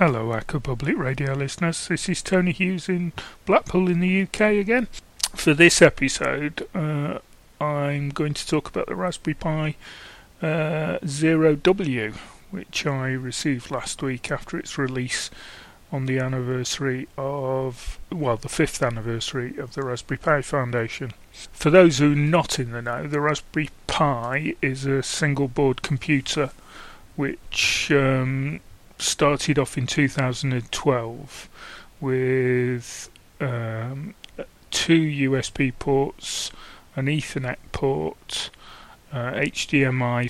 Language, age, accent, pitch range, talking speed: English, 30-49, British, 125-150 Hz, 125 wpm